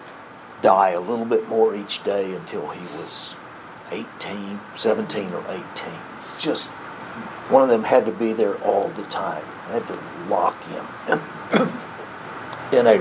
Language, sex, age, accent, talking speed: English, male, 60-79, American, 150 wpm